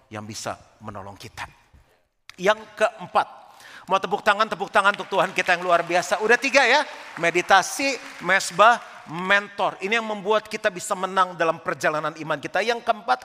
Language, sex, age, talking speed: Indonesian, male, 40-59, 160 wpm